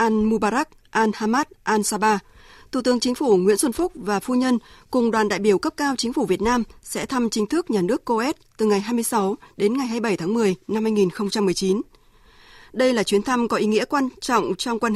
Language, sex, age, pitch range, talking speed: Vietnamese, female, 20-39, 200-250 Hz, 215 wpm